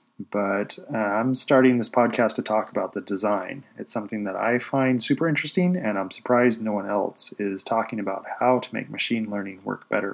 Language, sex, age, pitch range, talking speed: English, male, 20-39, 105-130 Hz, 200 wpm